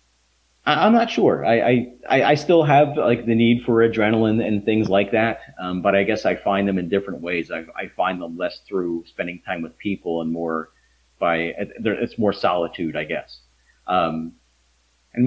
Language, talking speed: English, 185 wpm